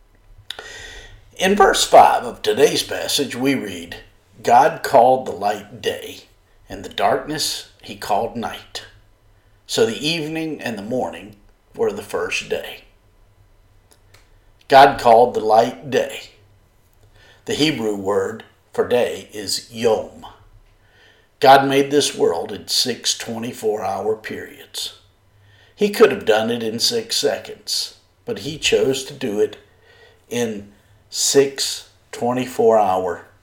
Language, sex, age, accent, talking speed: English, male, 50-69, American, 120 wpm